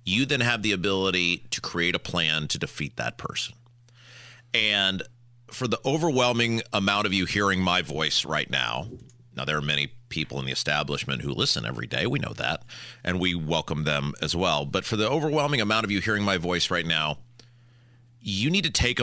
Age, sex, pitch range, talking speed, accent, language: 40-59, male, 90-120 Hz, 195 wpm, American, English